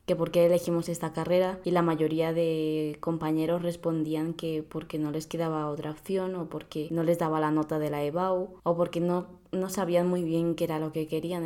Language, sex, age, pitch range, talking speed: Spanish, female, 20-39, 160-180 Hz, 215 wpm